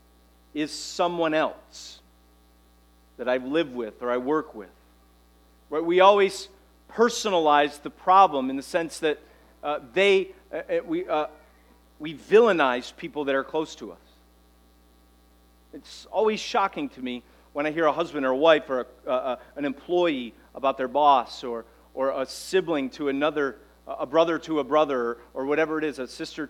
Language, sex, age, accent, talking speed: English, male, 40-59, American, 165 wpm